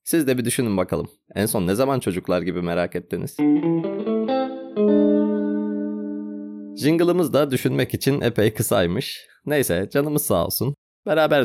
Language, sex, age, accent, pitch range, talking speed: Turkish, male, 30-49, native, 100-140 Hz, 125 wpm